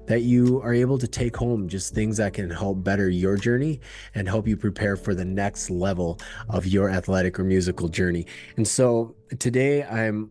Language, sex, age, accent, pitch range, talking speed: English, male, 30-49, American, 95-110 Hz, 190 wpm